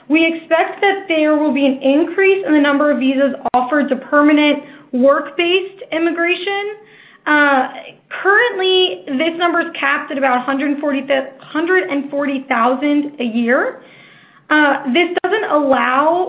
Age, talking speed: 10-29, 120 wpm